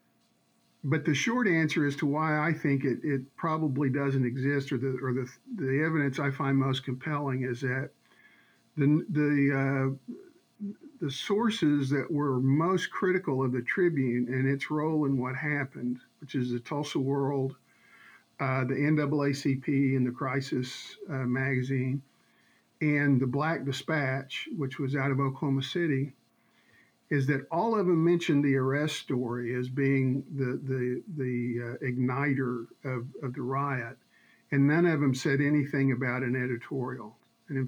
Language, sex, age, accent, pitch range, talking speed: English, male, 50-69, American, 130-155 Hz, 150 wpm